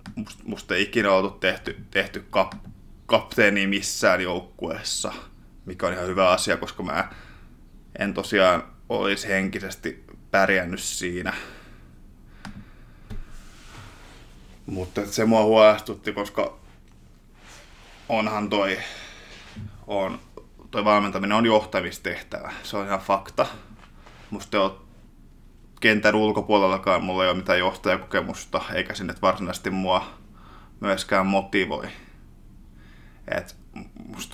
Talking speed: 95 wpm